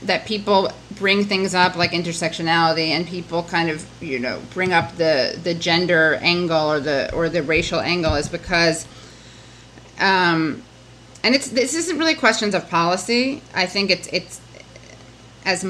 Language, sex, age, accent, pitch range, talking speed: English, female, 30-49, American, 165-220 Hz, 155 wpm